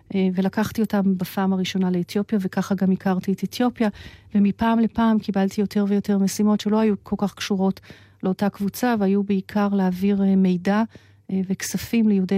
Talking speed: 140 wpm